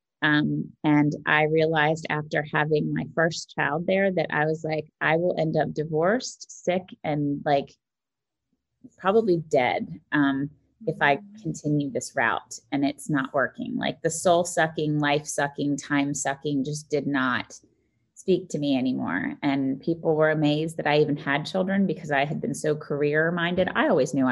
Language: English